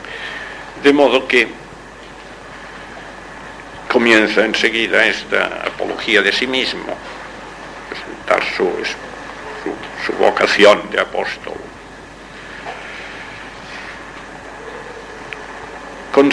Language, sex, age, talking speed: Spanish, male, 60-79, 60 wpm